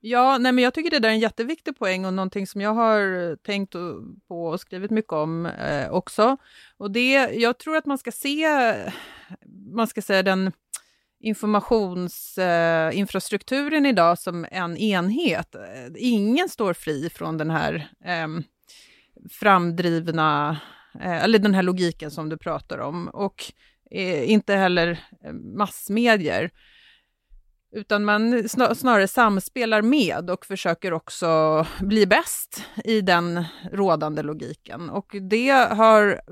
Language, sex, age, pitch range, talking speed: Swedish, female, 30-49, 170-230 Hz, 135 wpm